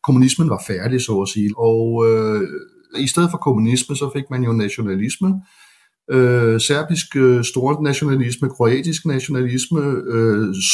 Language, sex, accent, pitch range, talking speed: Danish, male, native, 110-135 Hz, 135 wpm